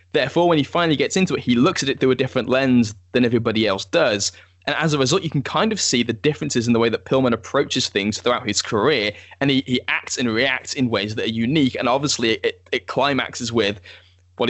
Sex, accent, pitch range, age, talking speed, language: male, British, 110-140 Hz, 10-29, 240 wpm, English